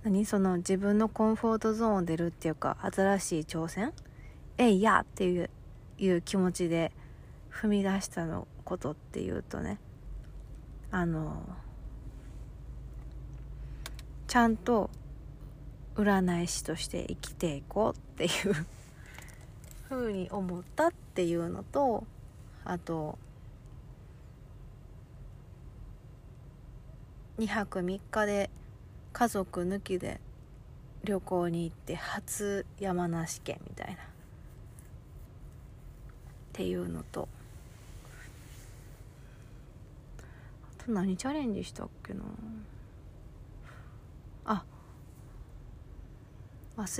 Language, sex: Japanese, female